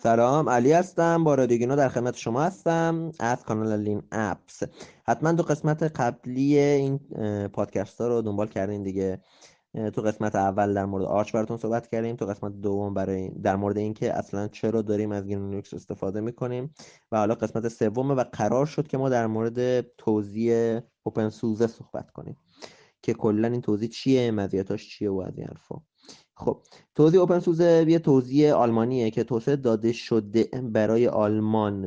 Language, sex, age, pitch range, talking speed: Persian, male, 20-39, 105-130 Hz, 165 wpm